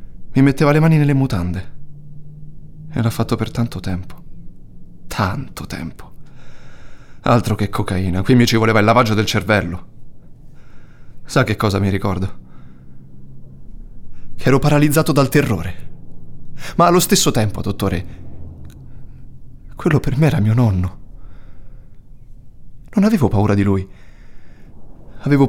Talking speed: 120 wpm